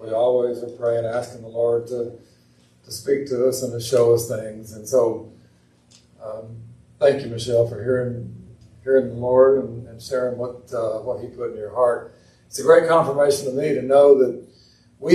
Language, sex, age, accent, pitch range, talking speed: English, male, 60-79, American, 115-135 Hz, 195 wpm